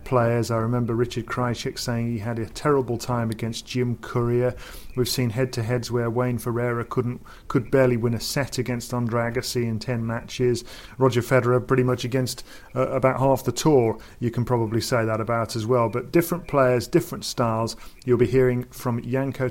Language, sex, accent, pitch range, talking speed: English, male, British, 120-135 Hz, 180 wpm